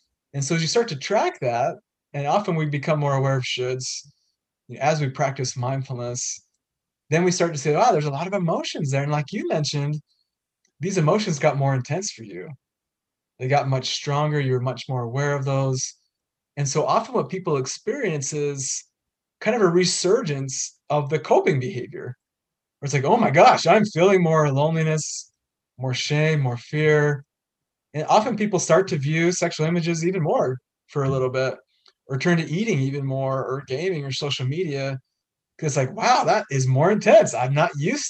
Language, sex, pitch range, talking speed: English, male, 135-180 Hz, 185 wpm